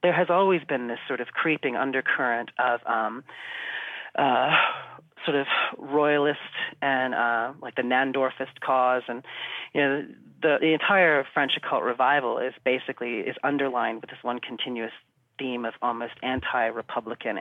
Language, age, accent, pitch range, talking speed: English, 40-59, American, 120-140 Hz, 145 wpm